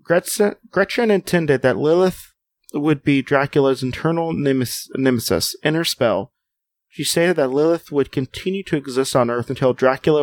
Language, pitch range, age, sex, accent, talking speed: English, 125-155 Hz, 30-49, male, American, 145 wpm